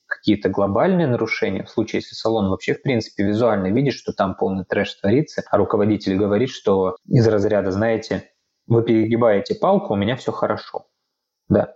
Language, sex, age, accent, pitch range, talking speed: Russian, male, 20-39, native, 105-145 Hz, 165 wpm